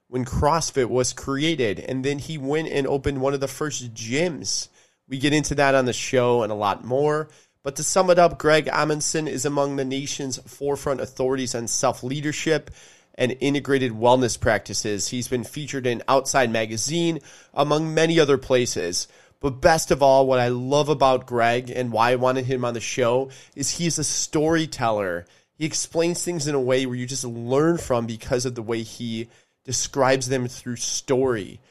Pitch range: 120-140 Hz